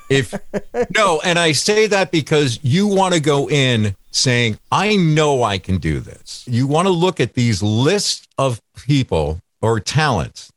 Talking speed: 170 wpm